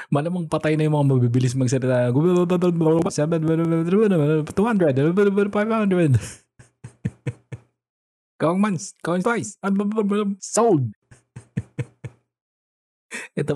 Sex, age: male, 20-39